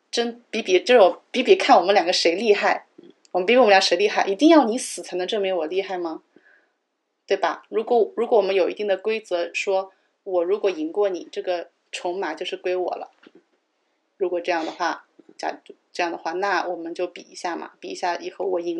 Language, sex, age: Chinese, female, 30-49